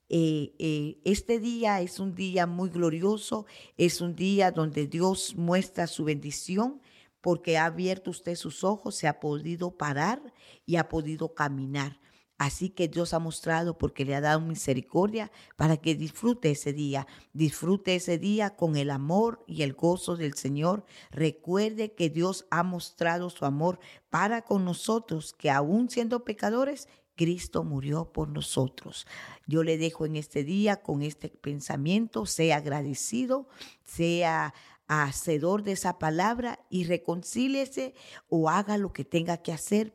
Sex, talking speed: female, 150 wpm